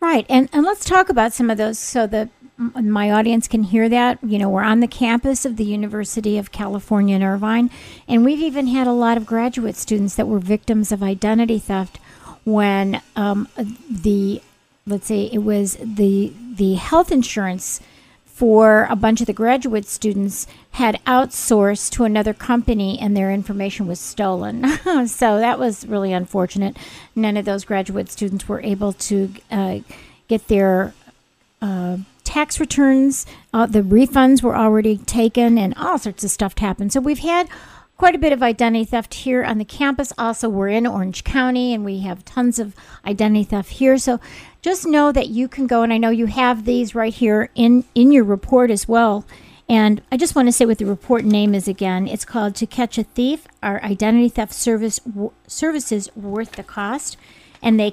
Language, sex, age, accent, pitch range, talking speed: English, female, 50-69, American, 205-250 Hz, 185 wpm